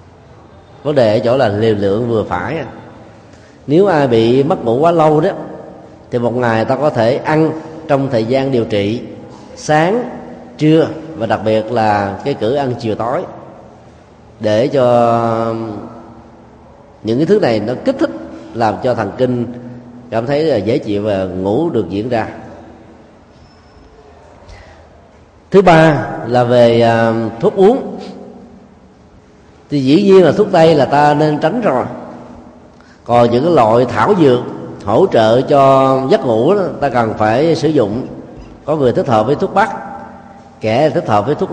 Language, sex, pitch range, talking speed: Vietnamese, male, 110-155 Hz, 155 wpm